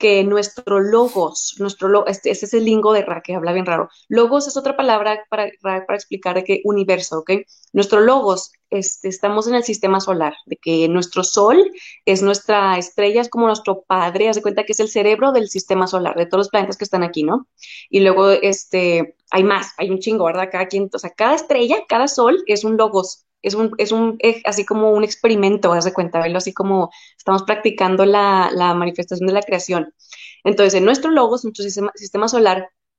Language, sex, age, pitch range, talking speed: Spanish, female, 20-39, 190-220 Hz, 205 wpm